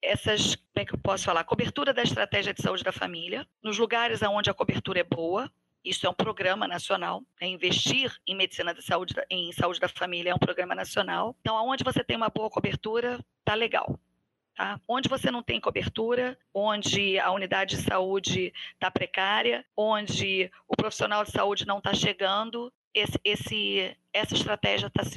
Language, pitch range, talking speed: Portuguese, 180-225 Hz, 180 wpm